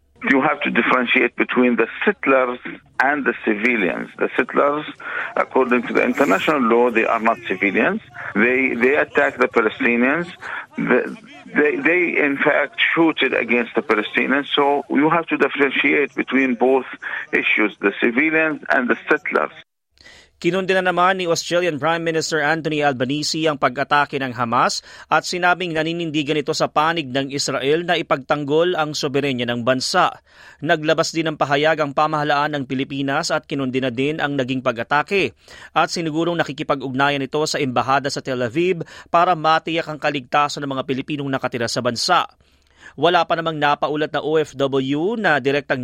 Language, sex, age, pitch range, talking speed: Filipino, male, 50-69, 130-160 Hz, 155 wpm